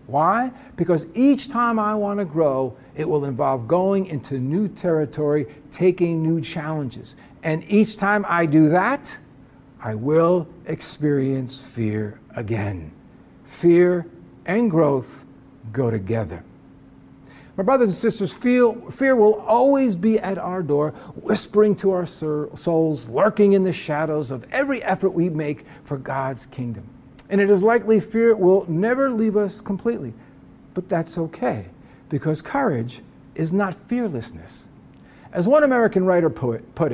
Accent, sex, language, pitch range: American, male, English, 145-205 Hz